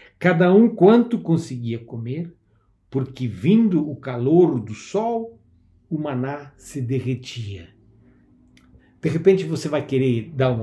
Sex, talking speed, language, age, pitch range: male, 125 wpm, Portuguese, 60-79, 120-165 Hz